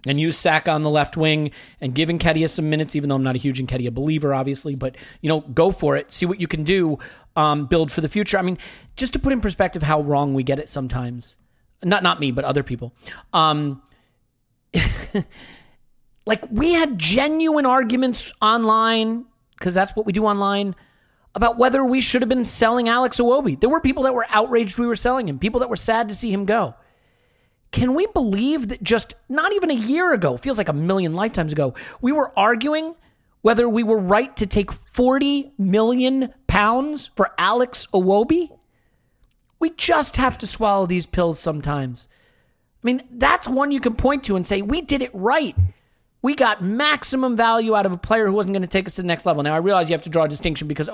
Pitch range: 150-240 Hz